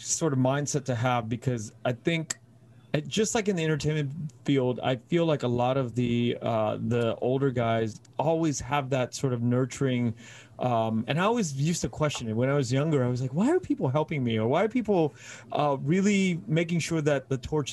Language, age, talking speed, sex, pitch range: English, 30-49, 210 wpm, male, 120-145 Hz